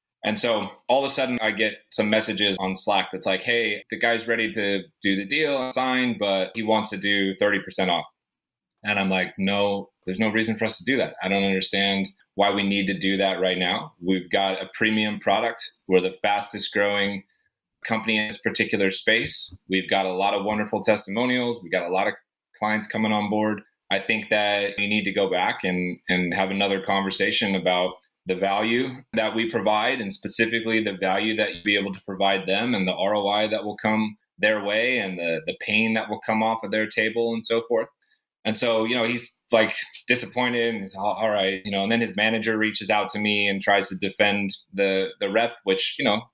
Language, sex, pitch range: English, male, 95-110 Hz